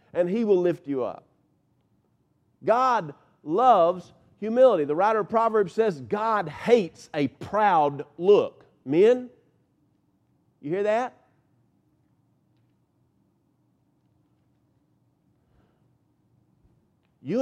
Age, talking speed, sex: 50-69, 85 wpm, male